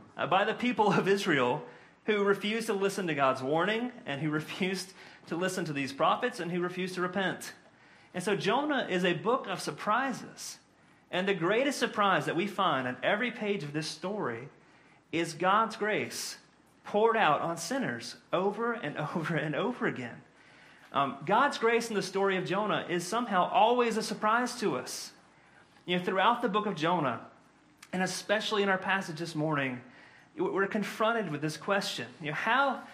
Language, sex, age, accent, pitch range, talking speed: English, male, 40-59, American, 160-215 Hz, 175 wpm